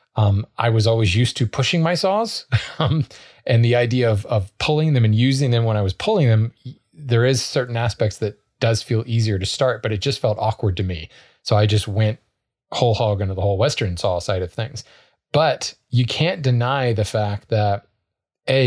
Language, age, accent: English, 30-49, American